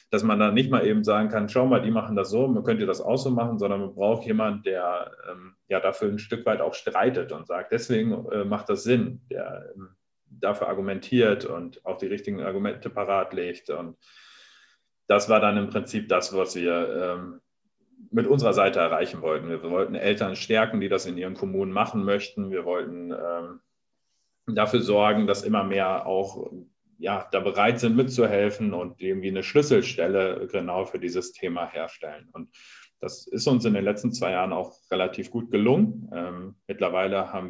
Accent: German